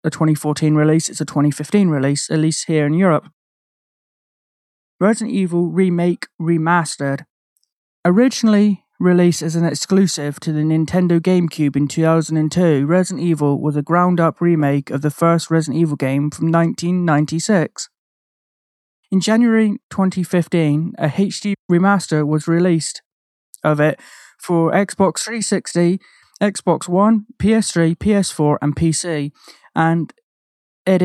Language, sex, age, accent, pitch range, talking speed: English, male, 20-39, British, 155-185 Hz, 120 wpm